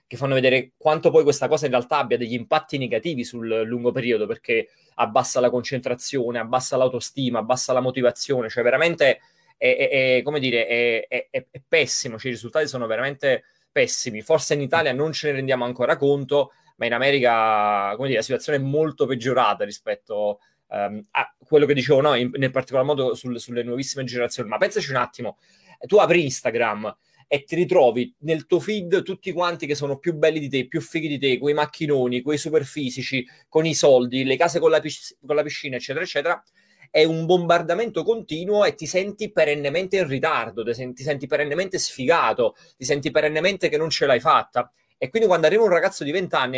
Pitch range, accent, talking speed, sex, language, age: 125-165 Hz, native, 195 wpm, male, Italian, 20-39